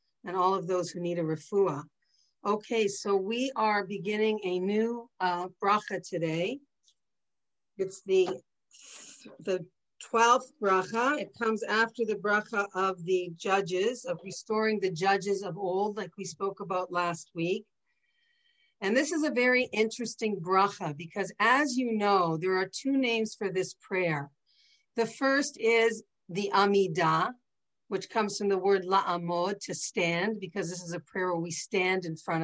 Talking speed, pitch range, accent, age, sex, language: 155 wpm, 185-230 Hz, American, 50-69, female, English